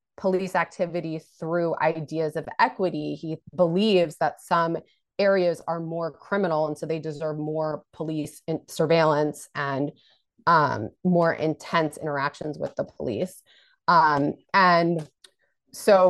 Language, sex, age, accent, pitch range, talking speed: English, female, 30-49, American, 140-170 Hz, 120 wpm